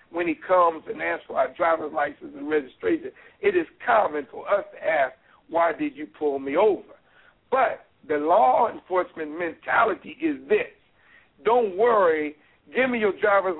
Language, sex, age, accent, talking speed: English, male, 60-79, American, 165 wpm